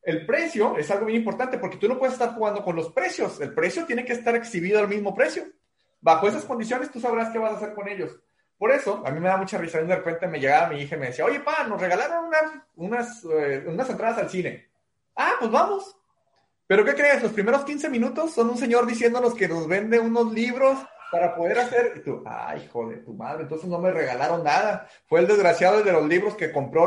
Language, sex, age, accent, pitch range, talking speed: Spanish, male, 30-49, Mexican, 175-250 Hz, 230 wpm